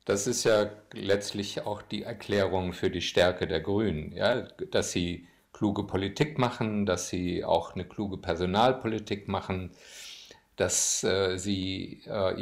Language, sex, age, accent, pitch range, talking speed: German, male, 50-69, German, 95-115 Hz, 135 wpm